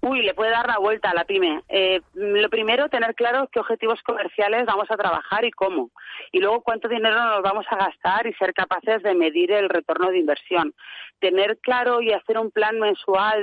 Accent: Spanish